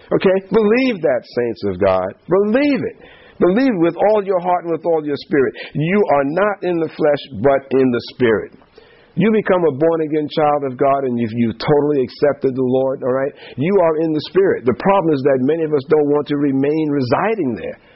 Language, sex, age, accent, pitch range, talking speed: English, male, 50-69, American, 145-195 Hz, 205 wpm